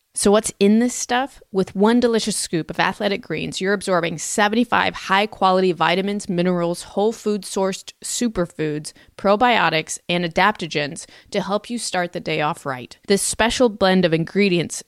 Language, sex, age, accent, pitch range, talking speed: English, female, 20-39, American, 170-205 Hz, 155 wpm